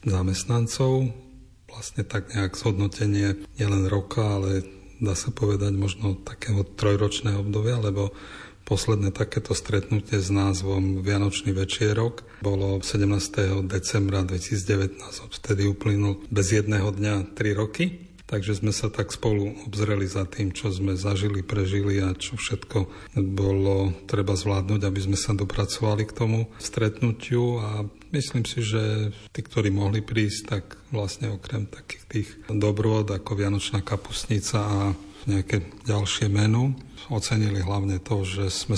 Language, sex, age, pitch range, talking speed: Slovak, male, 40-59, 100-110 Hz, 135 wpm